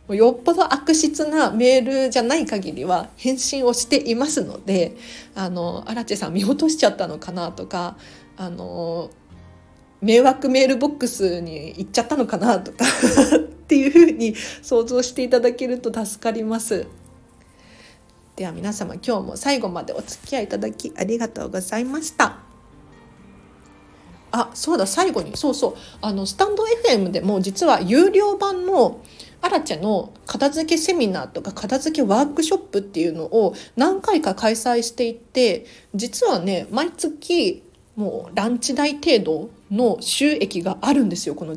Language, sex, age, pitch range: Japanese, female, 40-59, 190-280 Hz